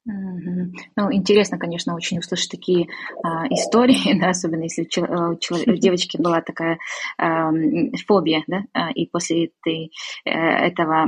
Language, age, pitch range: Russian, 20-39, 170-205 Hz